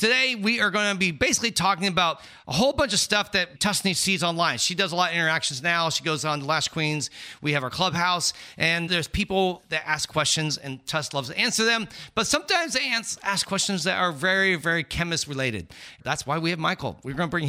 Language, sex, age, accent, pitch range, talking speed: English, male, 40-59, American, 150-195 Hz, 230 wpm